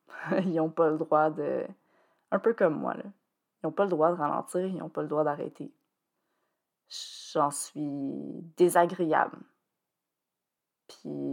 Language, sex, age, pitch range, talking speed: French, female, 20-39, 155-185 Hz, 150 wpm